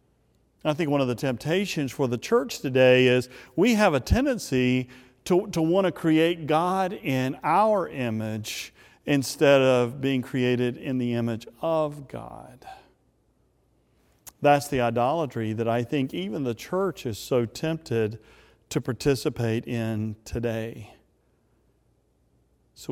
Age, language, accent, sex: 40-59, English, American, male